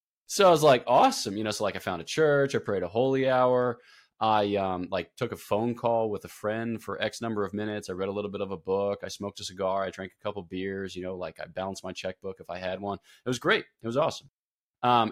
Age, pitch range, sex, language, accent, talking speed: 20-39, 95-115 Hz, male, English, American, 270 wpm